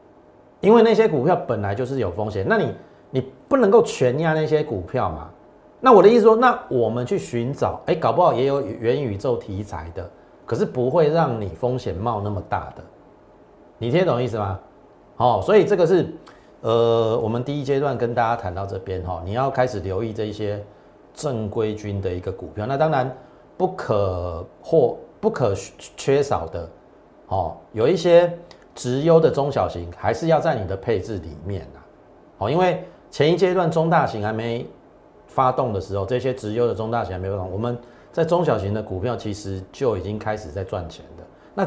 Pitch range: 95-140 Hz